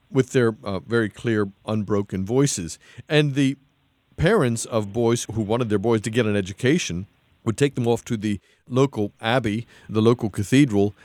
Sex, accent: male, American